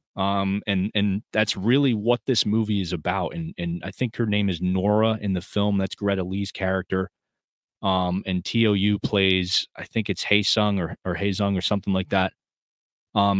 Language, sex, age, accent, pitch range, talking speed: English, male, 30-49, American, 95-110 Hz, 185 wpm